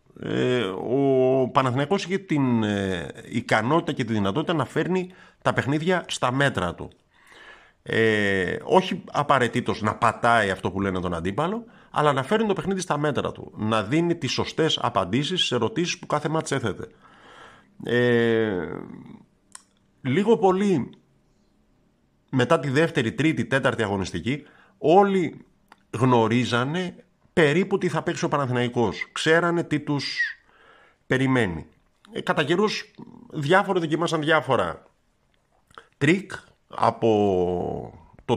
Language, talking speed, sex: Greek, 115 wpm, male